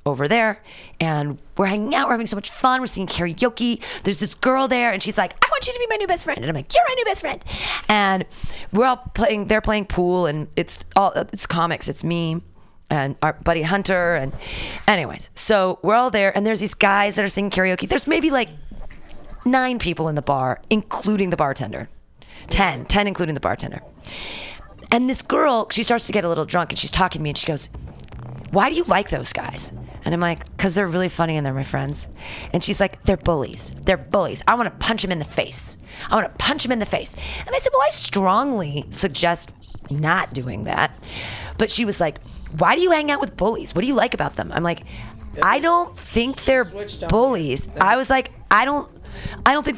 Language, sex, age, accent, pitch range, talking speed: English, female, 30-49, American, 155-235 Hz, 220 wpm